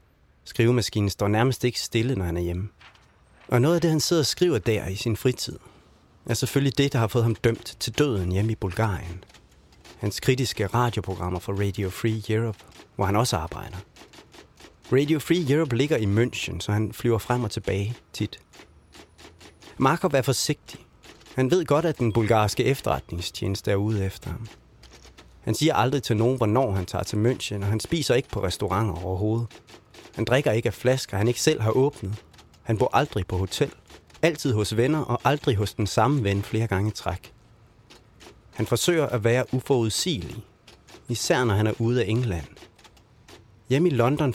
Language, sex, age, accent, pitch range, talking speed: Danish, male, 30-49, native, 90-125 Hz, 180 wpm